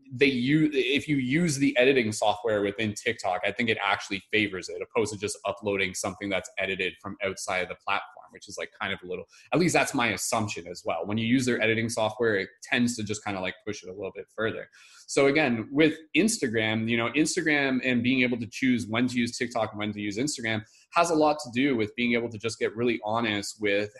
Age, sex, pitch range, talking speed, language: 20-39, male, 110-140 Hz, 240 wpm, English